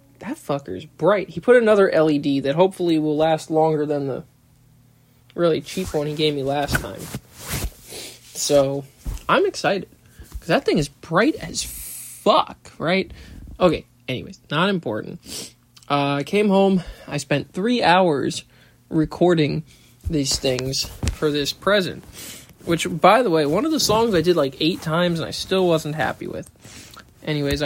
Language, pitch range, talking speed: English, 150-195 Hz, 155 wpm